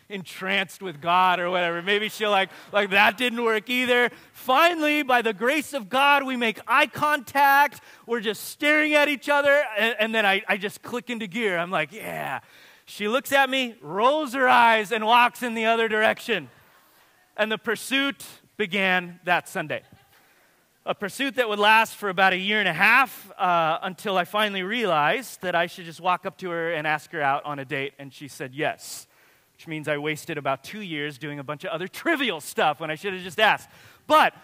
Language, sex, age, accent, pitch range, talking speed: English, male, 30-49, American, 190-265 Hz, 205 wpm